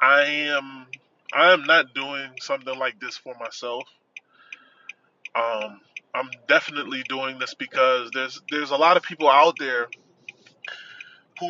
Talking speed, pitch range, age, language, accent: 135 wpm, 130-175 Hz, 20-39, English, American